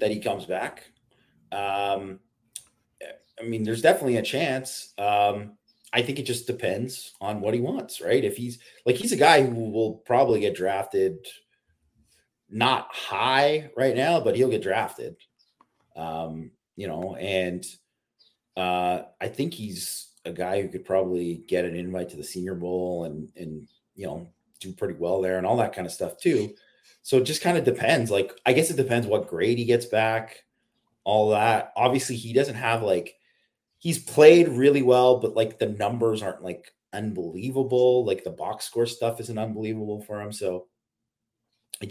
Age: 30-49